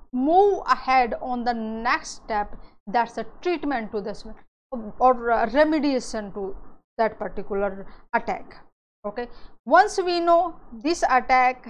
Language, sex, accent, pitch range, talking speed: English, female, Indian, 225-275 Hz, 125 wpm